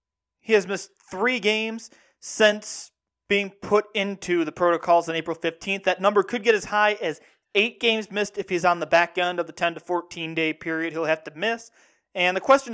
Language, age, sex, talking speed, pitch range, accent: English, 30-49, male, 205 wpm, 170-205 Hz, American